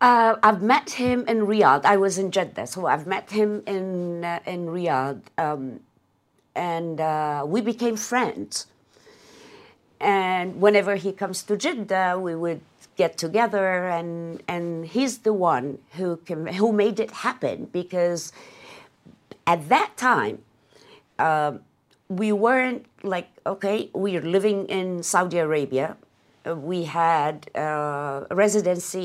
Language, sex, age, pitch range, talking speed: English, female, 50-69, 155-210 Hz, 130 wpm